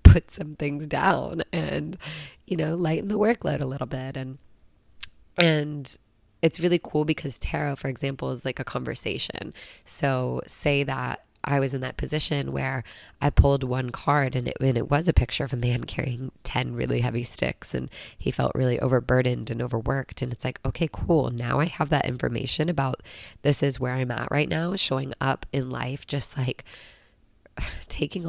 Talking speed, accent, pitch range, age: 180 wpm, American, 120-145 Hz, 20-39